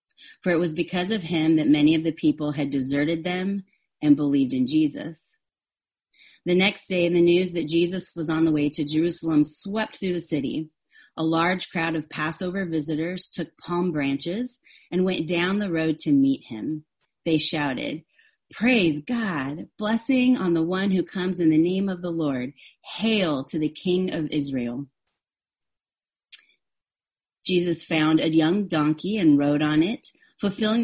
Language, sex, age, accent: English, female, 30-49, American